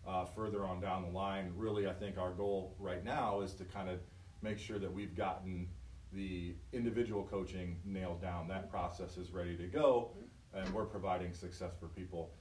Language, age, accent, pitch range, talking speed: English, 40-59, American, 90-105 Hz, 190 wpm